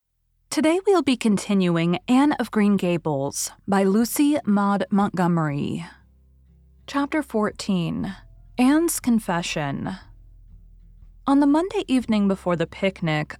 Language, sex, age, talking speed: English, female, 20-39, 105 wpm